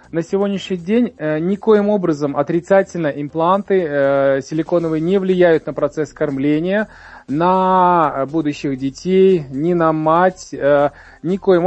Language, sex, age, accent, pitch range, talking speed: Russian, male, 20-39, native, 145-180 Hz, 120 wpm